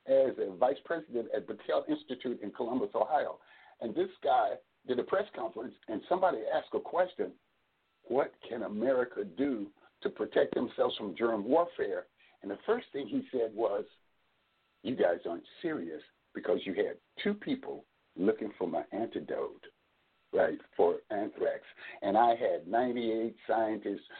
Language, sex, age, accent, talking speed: English, male, 60-79, American, 150 wpm